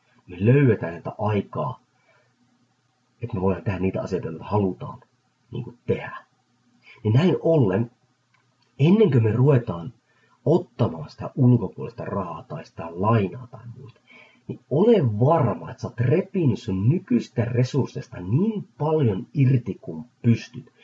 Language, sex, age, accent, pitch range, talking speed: Finnish, male, 30-49, native, 115-140 Hz, 125 wpm